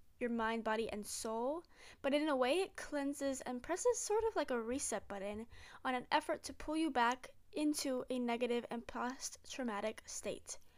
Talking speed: 180 wpm